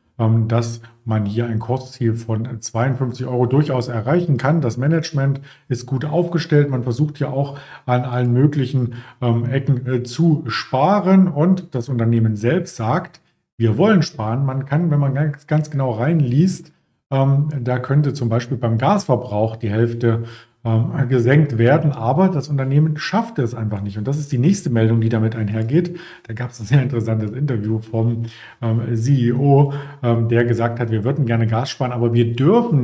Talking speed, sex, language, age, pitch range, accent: 165 wpm, male, German, 40-59, 120-150 Hz, German